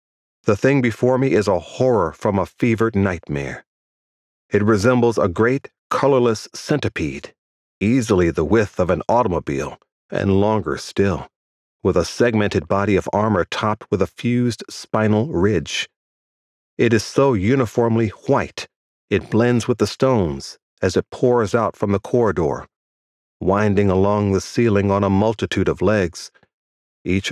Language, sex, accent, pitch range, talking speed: English, male, American, 90-120 Hz, 145 wpm